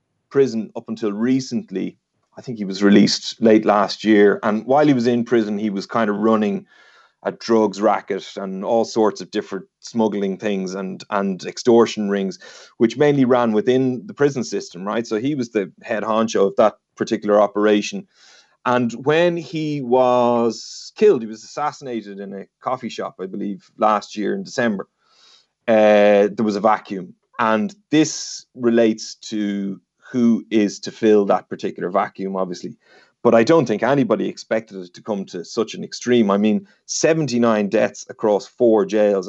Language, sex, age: English, male, 30-49